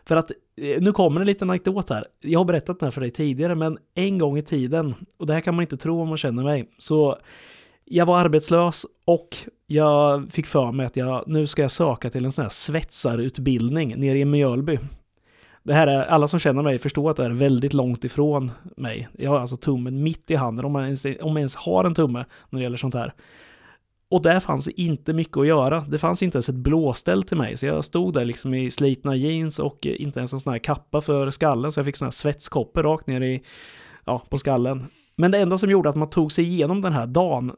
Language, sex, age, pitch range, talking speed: Swedish, male, 30-49, 130-165 Hz, 235 wpm